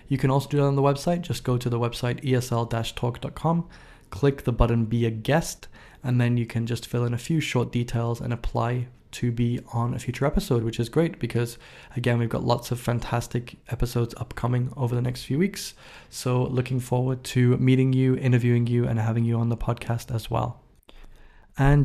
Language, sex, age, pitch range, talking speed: English, male, 20-39, 120-135 Hz, 200 wpm